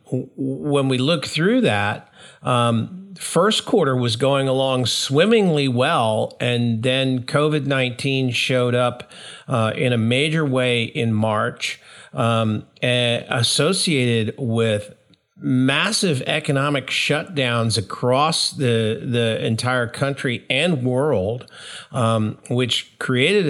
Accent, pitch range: American, 115-140 Hz